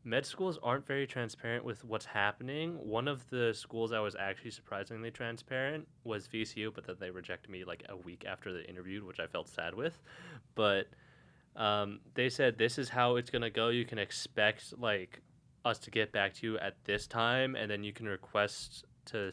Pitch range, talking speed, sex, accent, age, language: 100-125 Hz, 200 wpm, male, American, 20-39, English